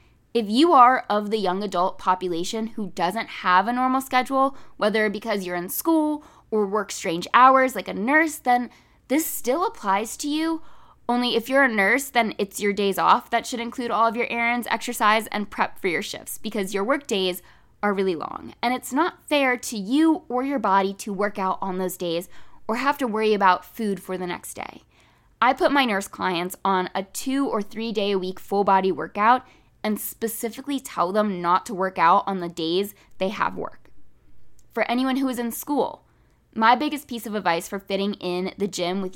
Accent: American